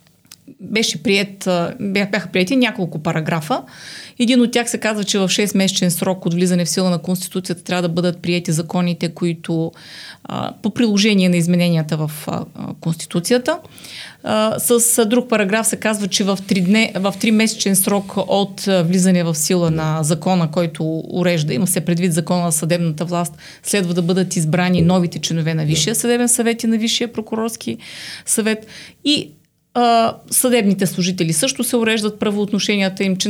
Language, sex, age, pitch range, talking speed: Bulgarian, female, 30-49, 175-220 Hz, 145 wpm